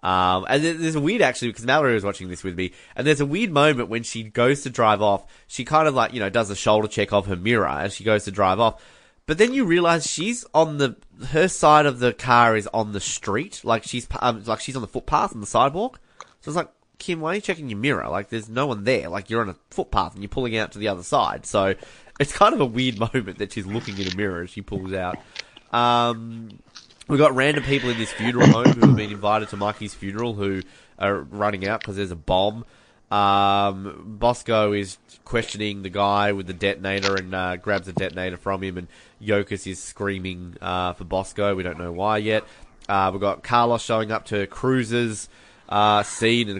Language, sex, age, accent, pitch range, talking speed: English, male, 20-39, Australian, 95-120 Hz, 230 wpm